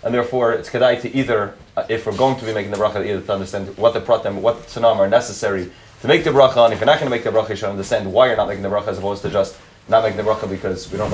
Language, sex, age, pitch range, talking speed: English, male, 30-49, 105-140 Hz, 315 wpm